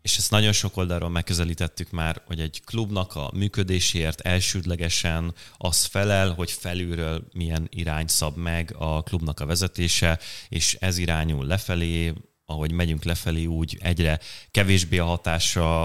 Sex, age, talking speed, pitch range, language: male, 30-49, 140 wpm, 80-95 Hz, Hungarian